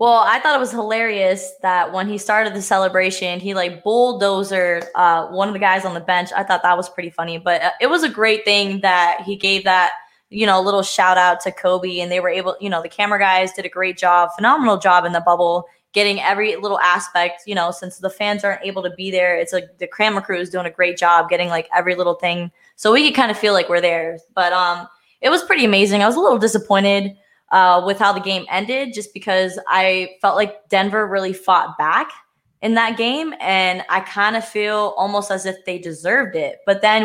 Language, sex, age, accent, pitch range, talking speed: English, female, 20-39, American, 180-215 Hz, 235 wpm